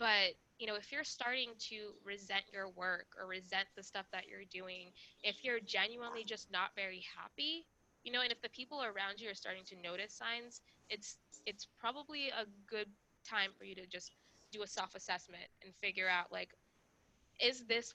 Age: 20-39